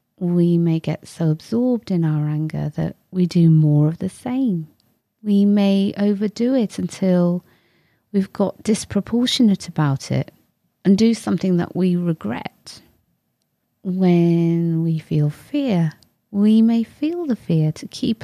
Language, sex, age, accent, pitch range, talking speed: English, female, 30-49, British, 160-210 Hz, 140 wpm